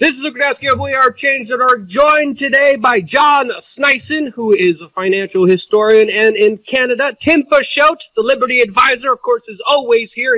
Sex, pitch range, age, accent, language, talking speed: male, 190-255 Hz, 30-49, American, English, 210 wpm